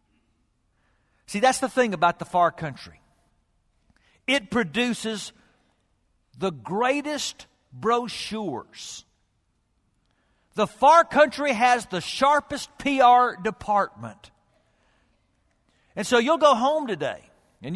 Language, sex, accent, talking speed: English, male, American, 95 wpm